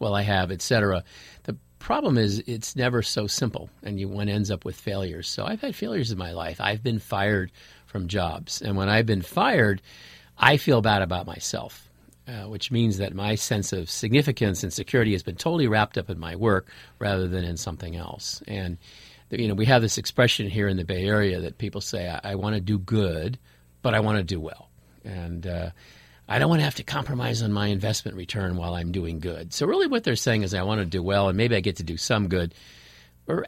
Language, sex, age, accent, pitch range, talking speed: English, male, 50-69, American, 90-115 Hz, 230 wpm